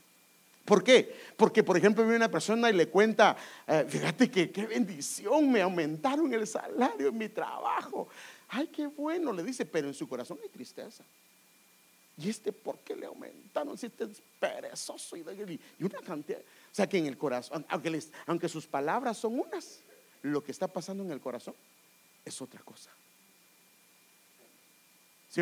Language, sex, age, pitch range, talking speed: English, male, 50-69, 160-250 Hz, 165 wpm